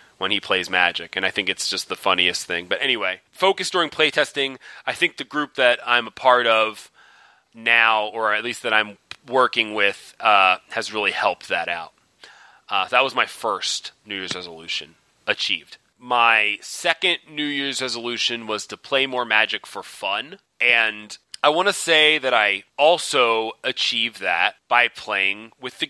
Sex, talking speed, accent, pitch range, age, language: male, 175 wpm, American, 115-160 Hz, 30-49, English